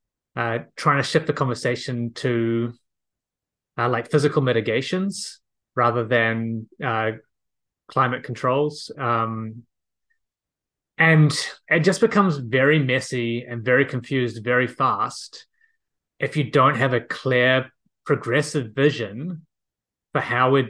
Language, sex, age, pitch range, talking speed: English, male, 20-39, 120-150 Hz, 115 wpm